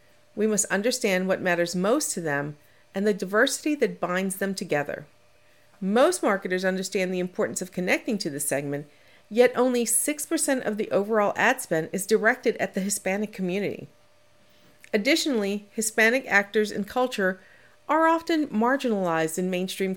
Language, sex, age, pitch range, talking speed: English, female, 50-69, 185-240 Hz, 145 wpm